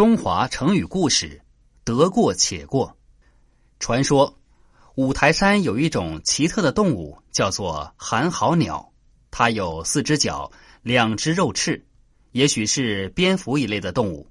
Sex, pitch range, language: male, 110-150 Hz, Chinese